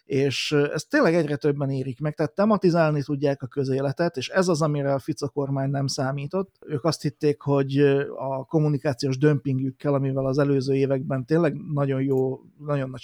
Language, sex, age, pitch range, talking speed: Hungarian, male, 30-49, 135-155 Hz, 170 wpm